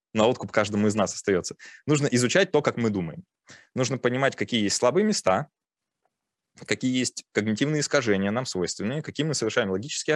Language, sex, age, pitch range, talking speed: Russian, male, 20-39, 100-125 Hz, 165 wpm